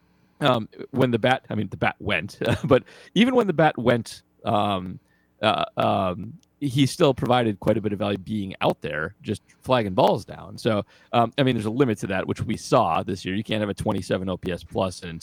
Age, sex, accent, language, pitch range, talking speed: 30-49, male, American, English, 100-125 Hz, 215 wpm